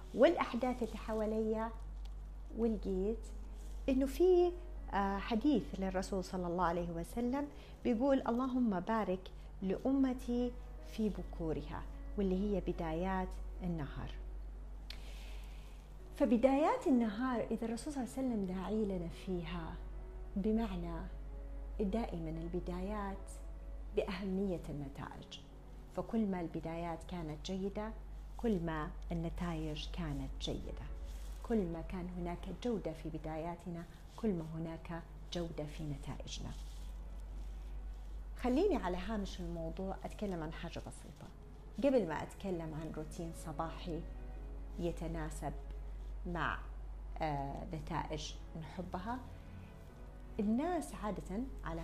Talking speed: 95 wpm